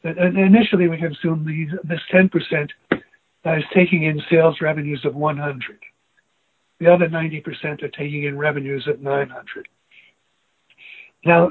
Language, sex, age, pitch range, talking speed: English, male, 60-79, 155-185 Hz, 120 wpm